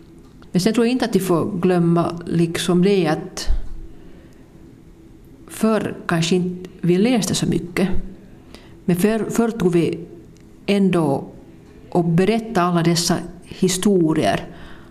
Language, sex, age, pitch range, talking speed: Swedish, female, 50-69, 170-195 Hz, 120 wpm